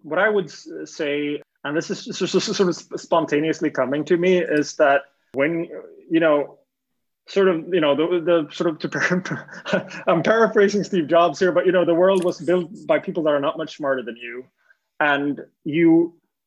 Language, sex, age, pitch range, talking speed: English, male, 20-39, 145-180 Hz, 180 wpm